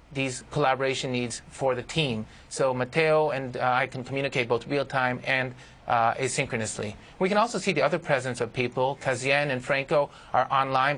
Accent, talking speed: American, 175 wpm